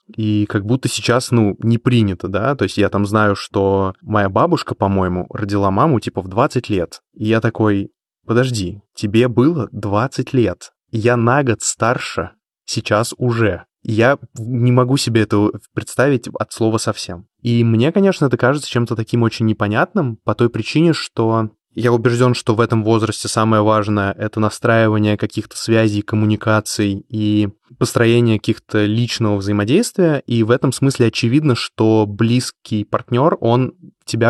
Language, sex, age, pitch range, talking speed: Russian, male, 20-39, 105-125 Hz, 150 wpm